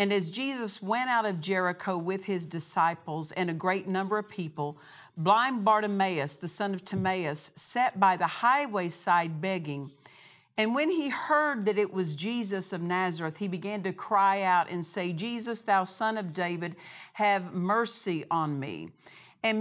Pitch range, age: 170-215 Hz, 50-69